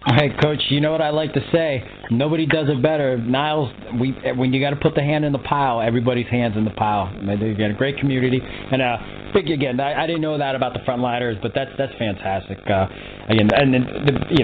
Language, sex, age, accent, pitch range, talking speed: English, male, 30-49, American, 115-145 Hz, 235 wpm